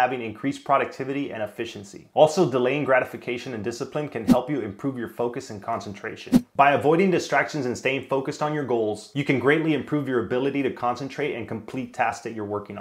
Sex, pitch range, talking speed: male, 120-145 Hz, 190 wpm